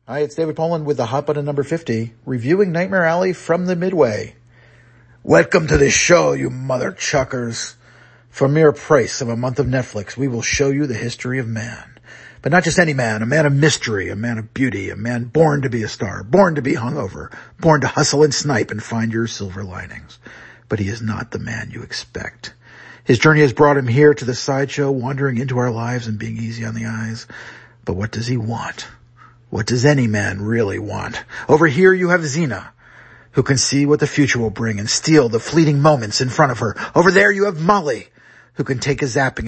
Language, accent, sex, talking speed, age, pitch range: English, American, male, 215 wpm, 50-69, 115-150 Hz